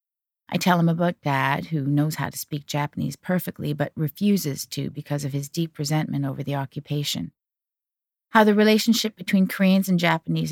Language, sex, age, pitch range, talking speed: English, female, 40-59, 150-230 Hz, 170 wpm